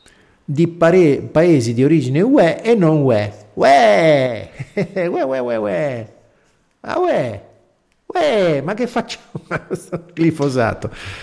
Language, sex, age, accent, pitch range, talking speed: Italian, male, 50-69, native, 125-180 Hz, 100 wpm